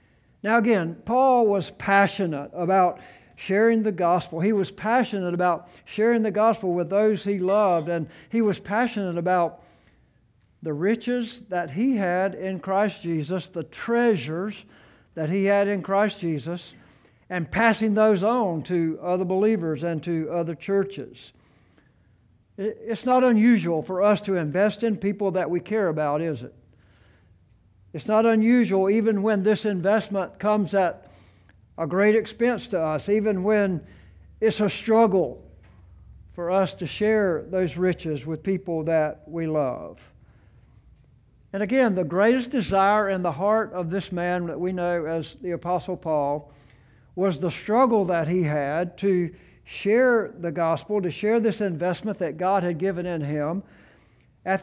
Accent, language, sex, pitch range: American, English, male, 165-210 Hz